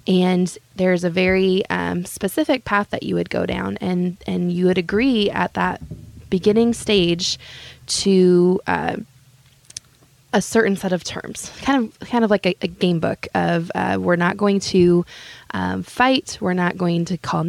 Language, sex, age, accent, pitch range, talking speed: English, female, 20-39, American, 175-200 Hz, 170 wpm